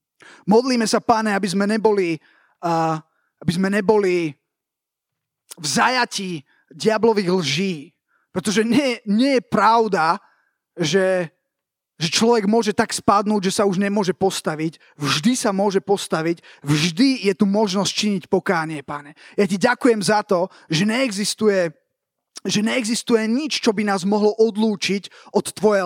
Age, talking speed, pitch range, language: 20-39, 130 wpm, 175-220 Hz, Slovak